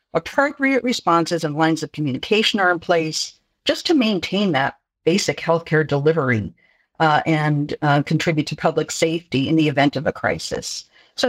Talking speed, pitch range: 160 wpm, 160-225 Hz